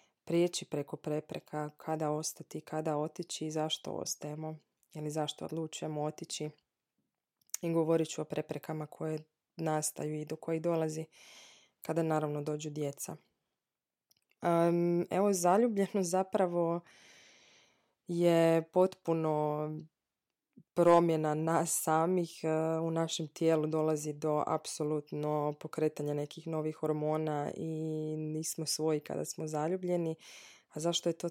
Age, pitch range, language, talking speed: 20-39, 150-165 Hz, Croatian, 110 wpm